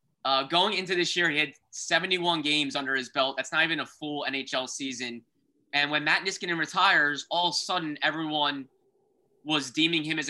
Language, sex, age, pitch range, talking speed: English, male, 20-39, 135-165 Hz, 190 wpm